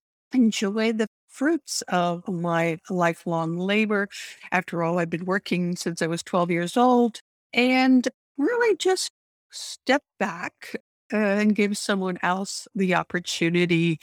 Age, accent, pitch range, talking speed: 60-79, American, 170-210 Hz, 125 wpm